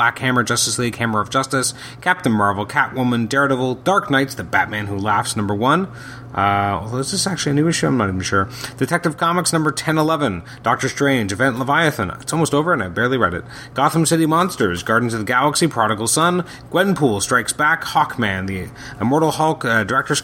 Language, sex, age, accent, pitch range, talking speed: English, male, 30-49, American, 115-155 Hz, 195 wpm